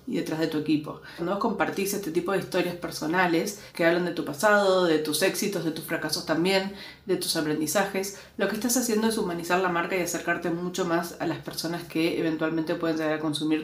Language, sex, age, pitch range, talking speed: Spanish, female, 40-59, 165-195 Hz, 215 wpm